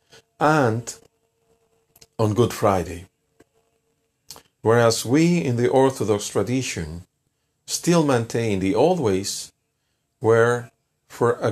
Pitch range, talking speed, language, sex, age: 95-125 Hz, 95 wpm, Spanish, male, 50-69